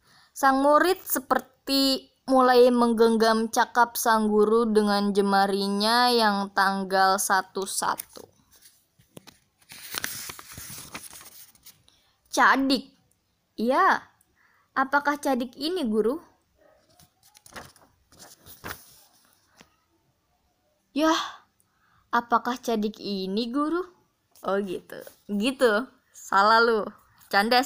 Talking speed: 65 wpm